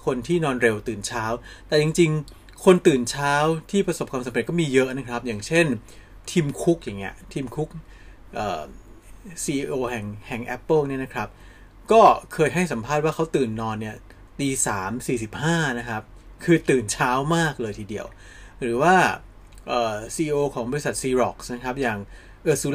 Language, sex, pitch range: Thai, male, 110-145 Hz